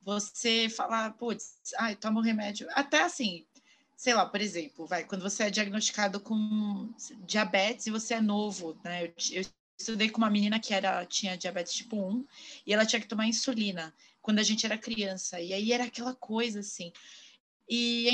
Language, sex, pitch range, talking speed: Portuguese, female, 195-260 Hz, 190 wpm